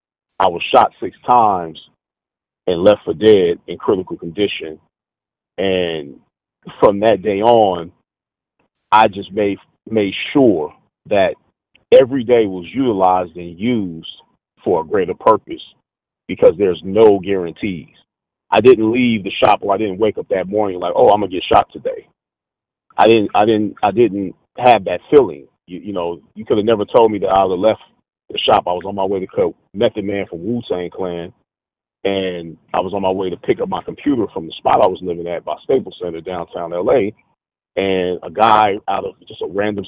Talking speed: 185 wpm